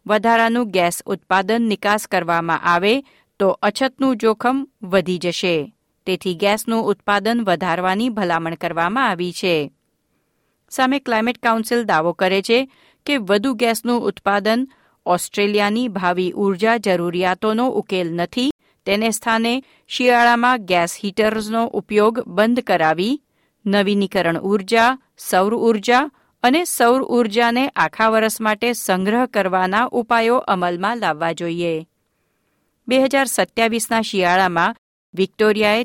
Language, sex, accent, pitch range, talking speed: Gujarati, female, native, 185-235 Hz, 105 wpm